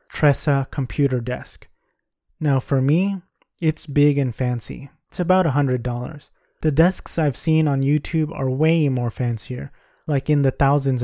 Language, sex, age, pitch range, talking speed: English, male, 30-49, 130-150 Hz, 145 wpm